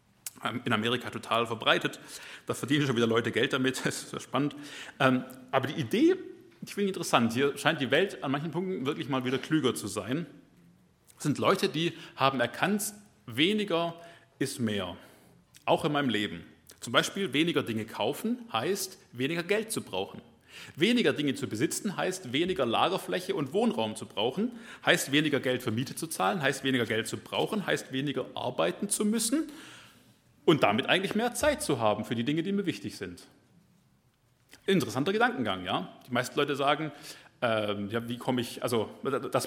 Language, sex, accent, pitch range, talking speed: German, male, German, 125-180 Hz, 170 wpm